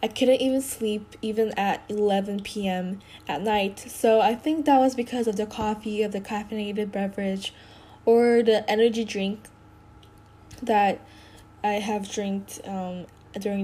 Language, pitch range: Korean, 195-230 Hz